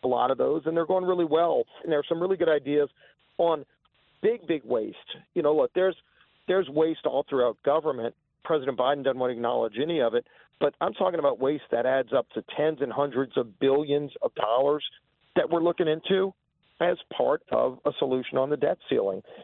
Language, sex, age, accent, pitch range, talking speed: English, male, 40-59, American, 130-170 Hz, 205 wpm